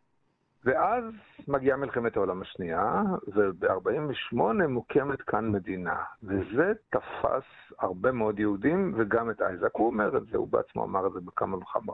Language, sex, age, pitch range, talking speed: Hebrew, male, 50-69, 110-155 Hz, 140 wpm